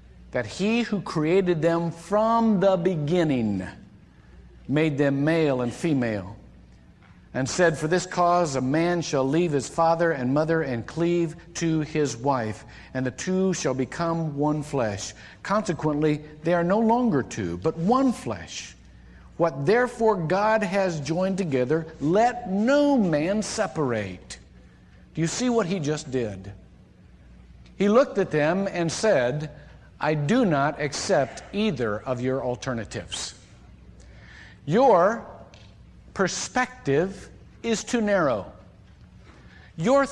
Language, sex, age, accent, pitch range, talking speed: English, male, 50-69, American, 120-190 Hz, 125 wpm